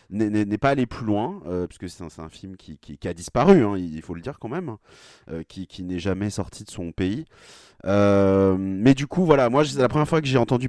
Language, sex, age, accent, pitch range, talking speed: French, male, 30-49, French, 95-130 Hz, 260 wpm